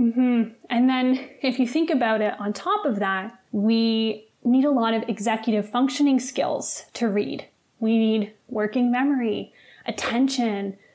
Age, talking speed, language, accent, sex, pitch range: 20-39, 155 wpm, English, American, female, 215-265 Hz